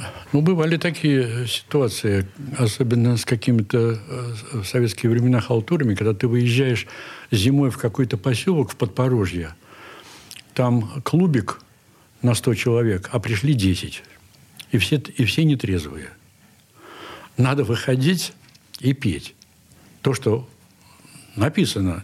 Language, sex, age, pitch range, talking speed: Russian, male, 60-79, 110-140 Hz, 110 wpm